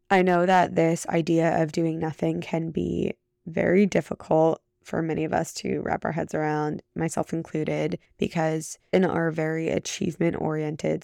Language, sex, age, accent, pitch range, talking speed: English, female, 20-39, American, 160-175 Hz, 150 wpm